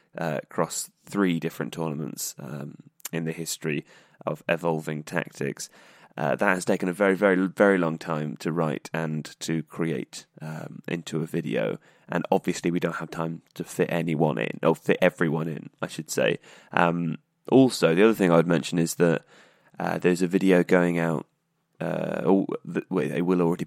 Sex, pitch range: male, 80-95 Hz